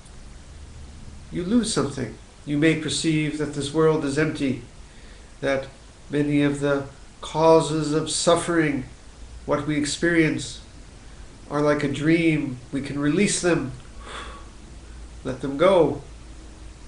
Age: 50-69